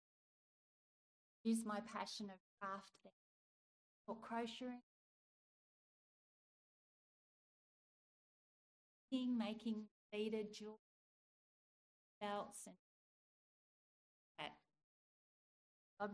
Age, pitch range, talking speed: 40-59, 205-230 Hz, 50 wpm